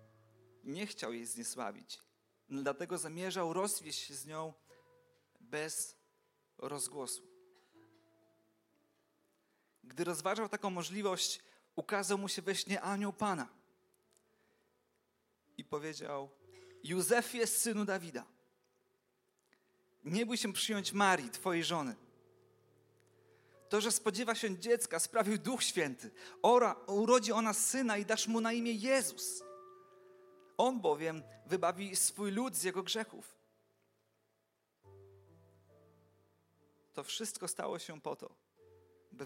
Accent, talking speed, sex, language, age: native, 105 wpm, male, Polish, 40-59